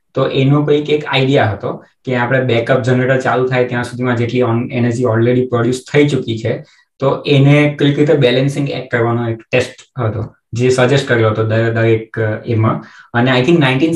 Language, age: Gujarati, 20-39